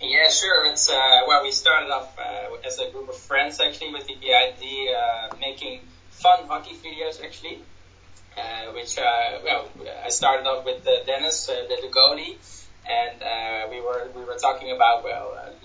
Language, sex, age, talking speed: English, male, 20-39, 180 wpm